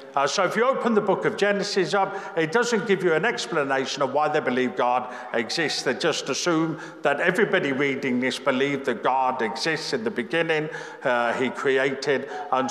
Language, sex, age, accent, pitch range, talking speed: English, male, 50-69, British, 140-210 Hz, 190 wpm